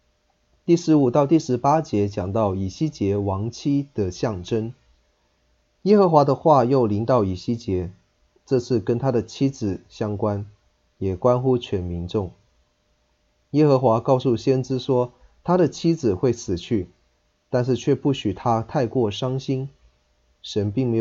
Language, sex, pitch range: Chinese, male, 95-130 Hz